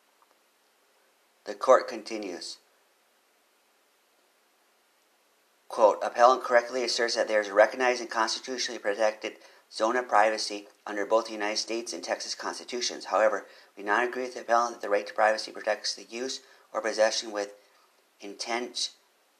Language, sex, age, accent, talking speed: English, male, 40-59, American, 140 wpm